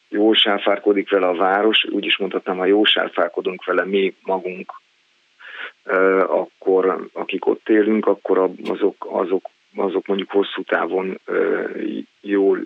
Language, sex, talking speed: Hungarian, male, 110 wpm